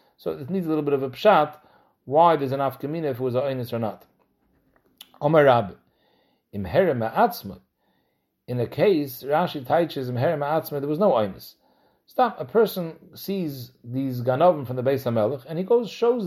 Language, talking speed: English, 180 wpm